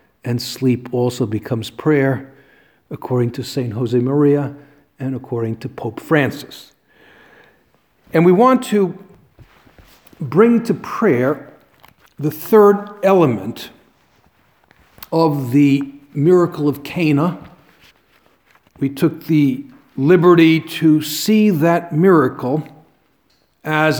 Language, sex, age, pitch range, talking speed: English, male, 50-69, 135-170 Hz, 100 wpm